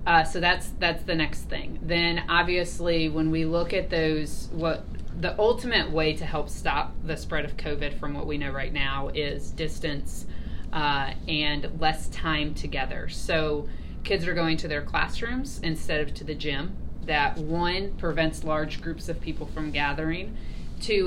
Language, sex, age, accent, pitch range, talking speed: English, female, 30-49, American, 140-160 Hz, 170 wpm